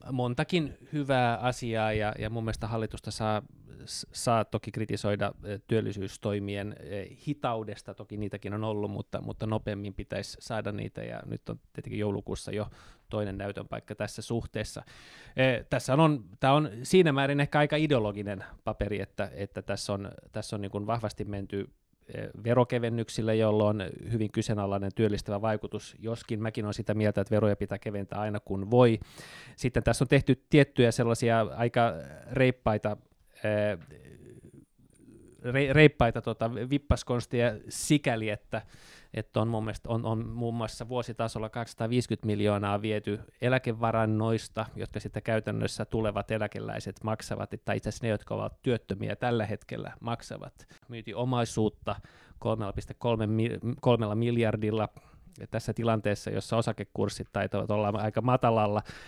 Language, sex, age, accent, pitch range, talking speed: Finnish, male, 20-39, native, 105-125 Hz, 130 wpm